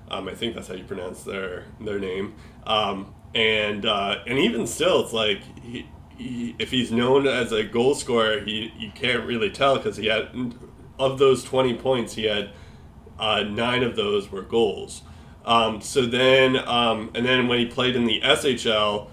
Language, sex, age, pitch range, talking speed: English, male, 20-39, 105-125 Hz, 185 wpm